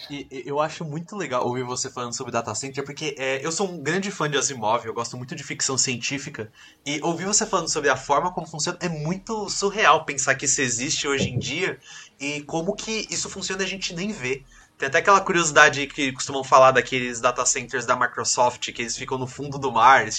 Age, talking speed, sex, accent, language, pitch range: 20-39, 225 wpm, male, Brazilian, Portuguese, 130-170 Hz